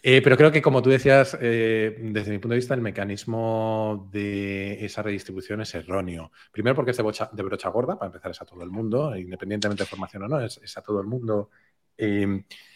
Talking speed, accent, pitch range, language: 215 wpm, Spanish, 100-130 Hz, Spanish